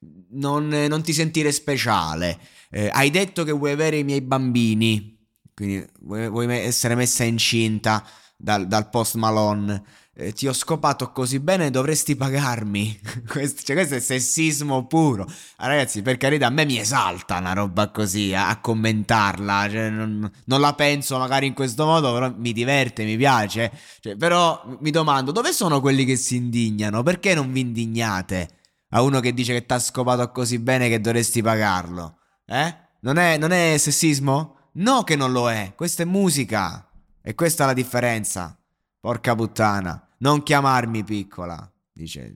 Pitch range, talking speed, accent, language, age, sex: 105-140 Hz, 165 wpm, native, Italian, 20-39, male